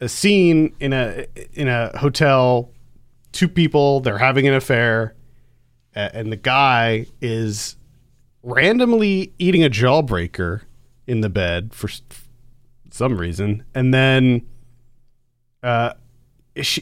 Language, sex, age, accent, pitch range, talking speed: English, male, 40-59, American, 120-145 Hz, 105 wpm